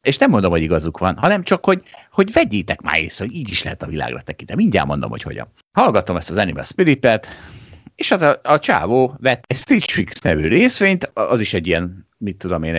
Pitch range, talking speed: 95-125 Hz, 220 wpm